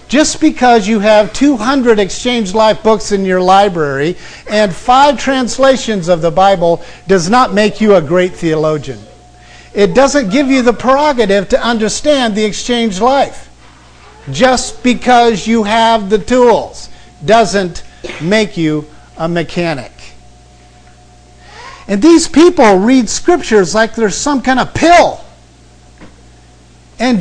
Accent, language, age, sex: American, English, 50-69, male